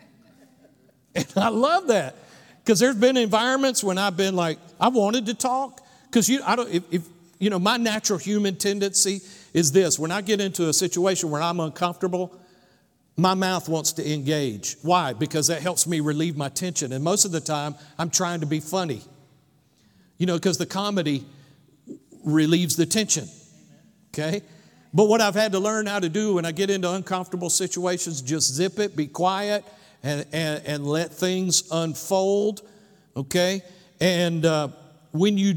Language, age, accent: English, 50-69, American